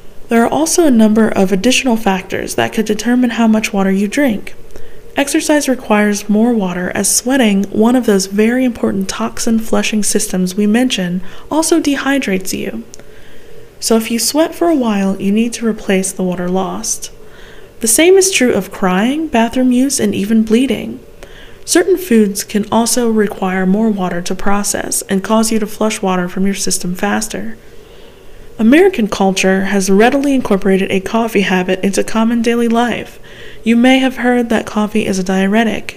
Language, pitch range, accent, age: English, 195-245 Hz, American, 20-39